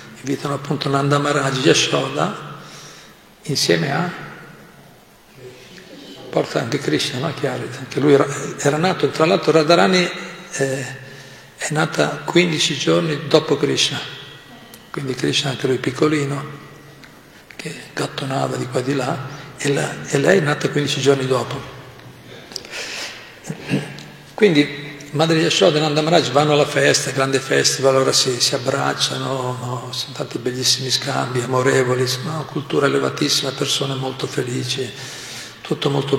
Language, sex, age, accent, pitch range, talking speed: Italian, male, 50-69, native, 130-150 Hz, 125 wpm